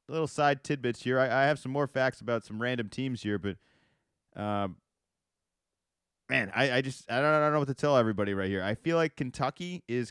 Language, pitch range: English, 110-135 Hz